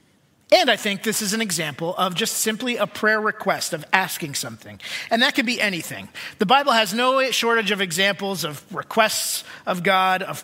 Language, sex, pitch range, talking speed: English, male, 180-220 Hz, 190 wpm